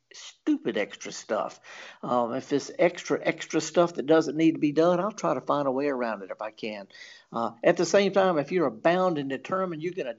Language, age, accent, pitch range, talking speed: English, 60-79, American, 135-185 Hz, 230 wpm